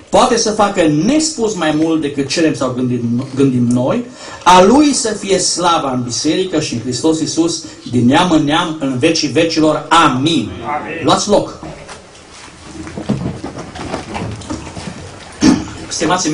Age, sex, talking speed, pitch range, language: 40-59, male, 125 wpm, 135-180 Hz, Romanian